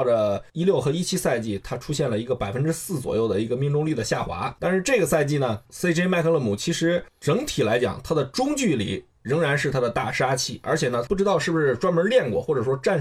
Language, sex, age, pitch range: Chinese, male, 20-39, 125-170 Hz